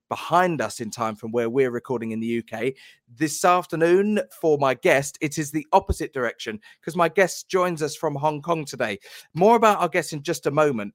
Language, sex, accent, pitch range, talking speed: English, male, British, 125-170 Hz, 210 wpm